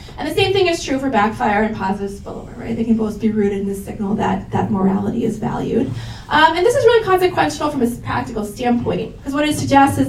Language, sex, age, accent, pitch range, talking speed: English, female, 20-39, American, 220-300 Hz, 240 wpm